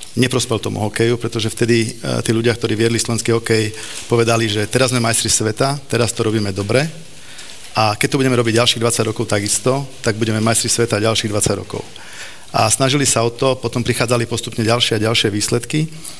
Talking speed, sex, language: 185 wpm, male, Slovak